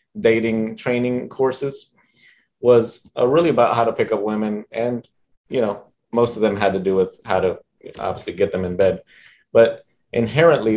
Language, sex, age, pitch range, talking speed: English, male, 20-39, 105-165 Hz, 175 wpm